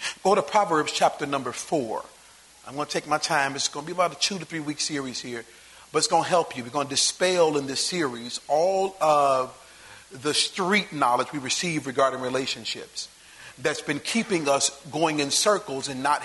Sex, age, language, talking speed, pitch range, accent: male, 40-59, English, 205 wpm, 140-180 Hz, American